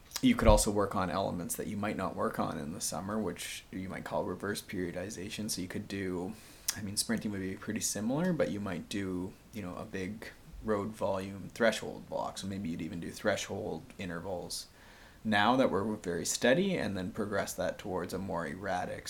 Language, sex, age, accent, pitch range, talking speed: English, male, 20-39, American, 100-115 Hz, 200 wpm